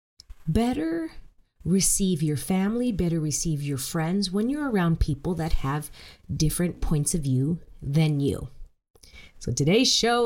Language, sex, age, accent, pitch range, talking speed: English, female, 30-49, American, 150-195 Hz, 135 wpm